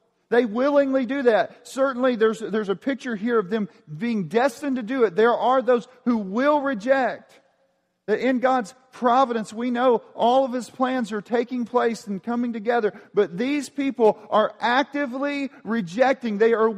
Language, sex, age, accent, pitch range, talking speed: English, male, 40-59, American, 225-275 Hz, 170 wpm